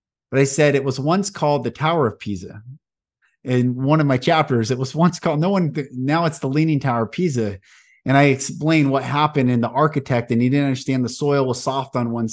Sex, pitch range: male, 120-155 Hz